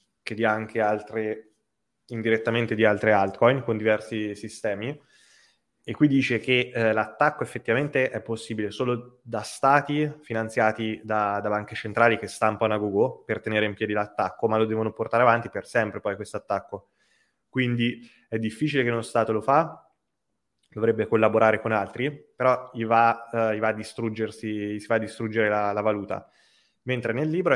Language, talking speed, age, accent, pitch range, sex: Italian, 165 wpm, 20-39, native, 110-125 Hz, male